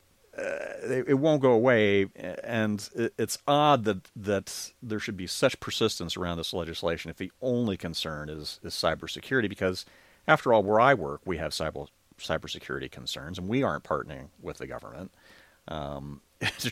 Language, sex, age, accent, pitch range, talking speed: English, male, 40-59, American, 85-105 Hz, 170 wpm